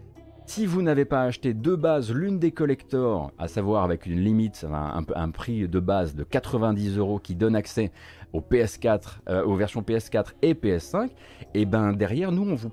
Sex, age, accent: male, 30-49, French